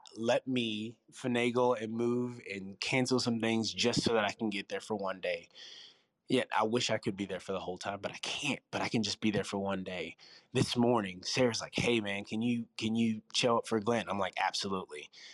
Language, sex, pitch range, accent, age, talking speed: English, male, 100-120 Hz, American, 20-39, 235 wpm